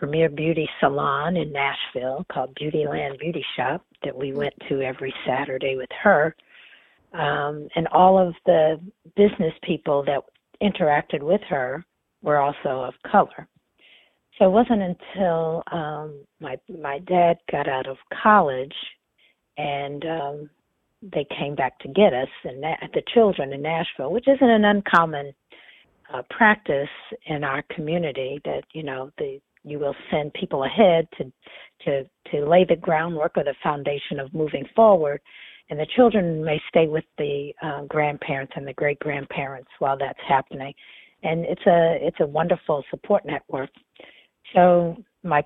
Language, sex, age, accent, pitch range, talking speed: English, female, 50-69, American, 140-175 Hz, 150 wpm